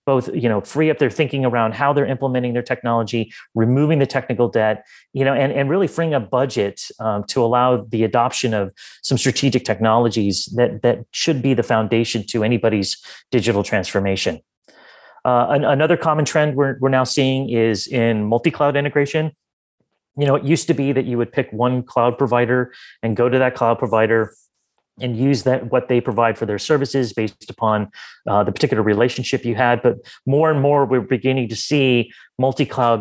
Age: 30-49